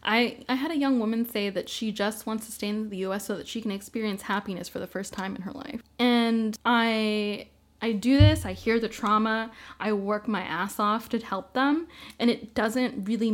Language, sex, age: English, female, 10-29